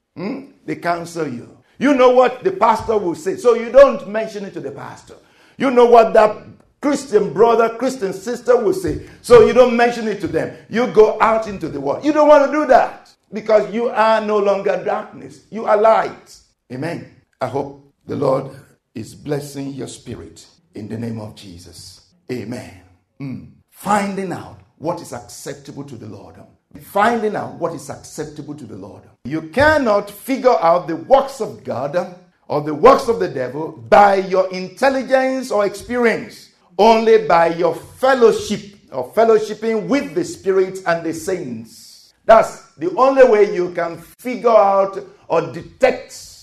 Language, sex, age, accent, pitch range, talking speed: English, male, 50-69, Nigerian, 135-220 Hz, 170 wpm